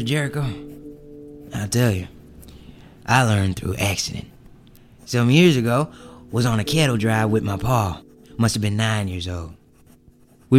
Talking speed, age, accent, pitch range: 145 wpm, 20-39, American, 95-120 Hz